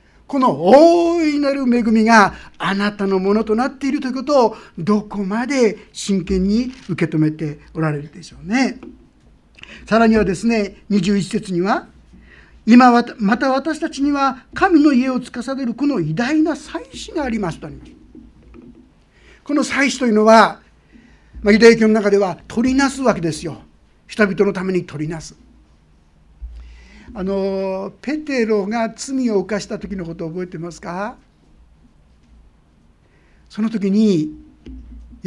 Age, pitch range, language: 50-69, 170-245 Hz, Japanese